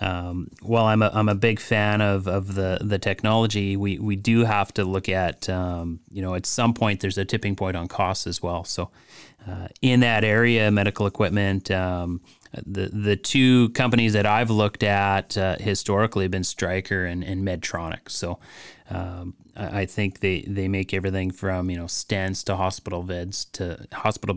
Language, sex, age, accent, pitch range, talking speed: English, male, 30-49, American, 95-110 Hz, 185 wpm